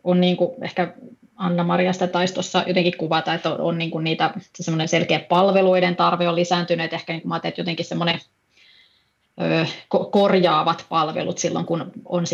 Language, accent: Finnish, native